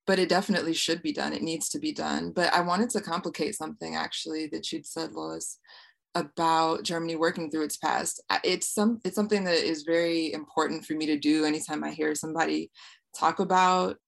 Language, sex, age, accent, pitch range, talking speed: English, female, 20-39, American, 160-185 Hz, 195 wpm